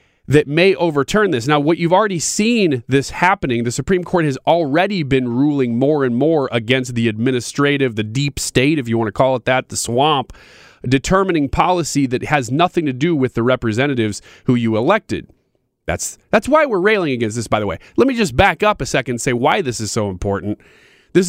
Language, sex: English, male